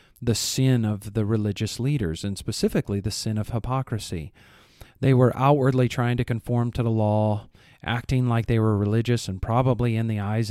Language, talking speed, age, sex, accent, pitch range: English, 175 wpm, 40-59, male, American, 105-130 Hz